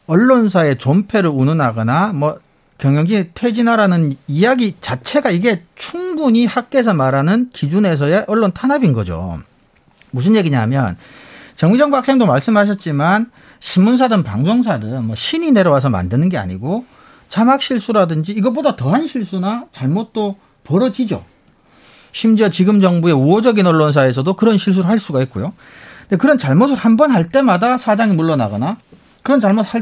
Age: 40-59